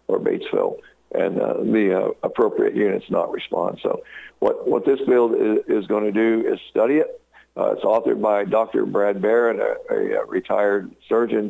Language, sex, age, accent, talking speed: English, male, 60-79, American, 175 wpm